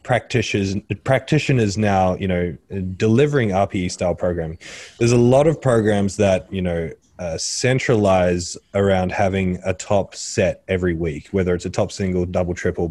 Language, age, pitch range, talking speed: English, 20-39, 90-105 Hz, 155 wpm